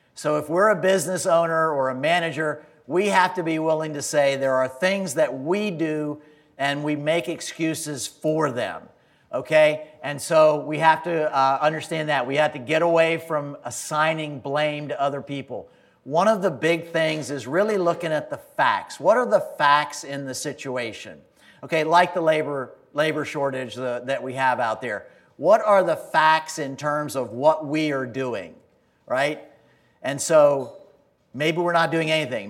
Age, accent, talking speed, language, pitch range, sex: 50-69, American, 175 wpm, English, 140-160 Hz, male